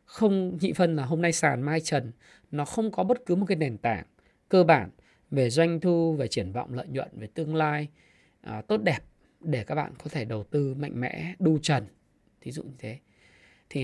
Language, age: Vietnamese, 20-39